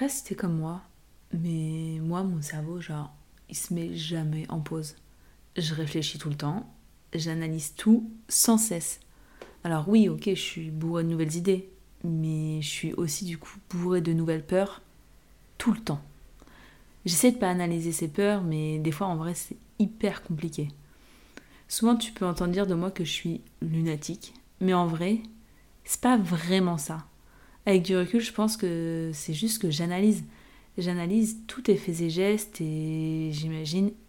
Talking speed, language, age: 165 wpm, French, 20-39